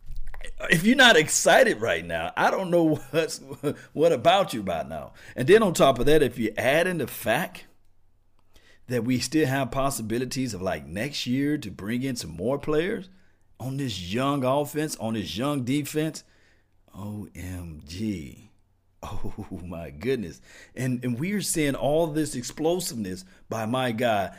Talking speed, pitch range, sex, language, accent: 155 wpm, 95-125 Hz, male, English, American